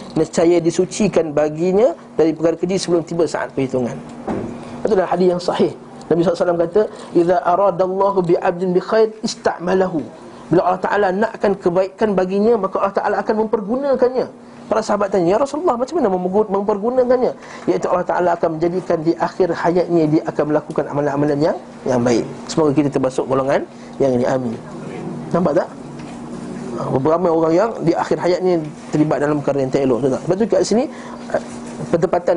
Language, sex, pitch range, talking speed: Malay, male, 160-190 Hz, 160 wpm